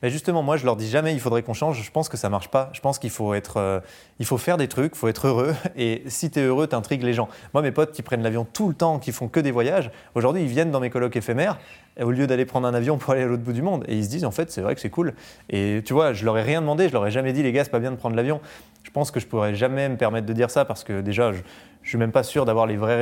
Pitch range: 115-145 Hz